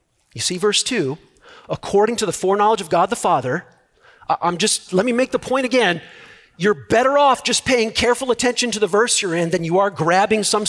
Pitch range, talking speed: 145-240 Hz, 210 wpm